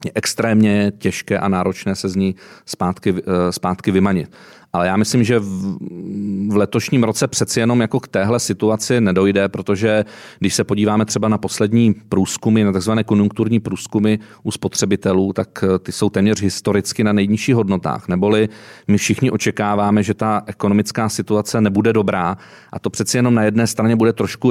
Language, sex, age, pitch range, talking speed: Czech, male, 40-59, 100-110 Hz, 160 wpm